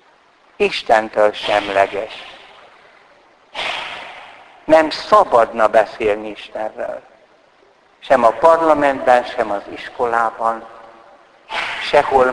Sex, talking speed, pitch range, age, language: male, 65 wpm, 120-160 Hz, 60-79, Hungarian